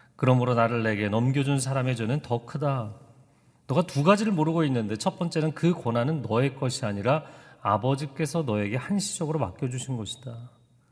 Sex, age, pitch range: male, 40-59, 125-170 Hz